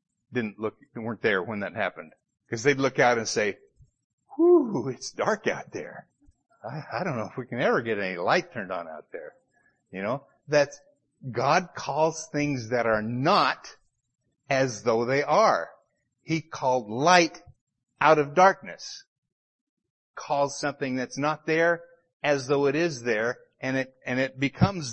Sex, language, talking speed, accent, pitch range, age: male, English, 160 wpm, American, 130-170 Hz, 50-69